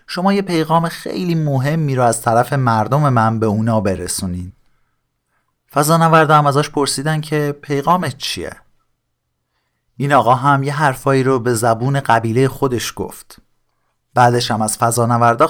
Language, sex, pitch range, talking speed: Persian, male, 115-155 Hz, 140 wpm